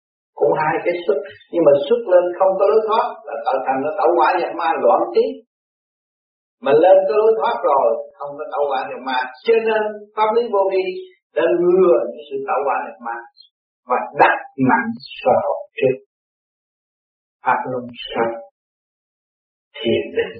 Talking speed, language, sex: 170 wpm, Vietnamese, male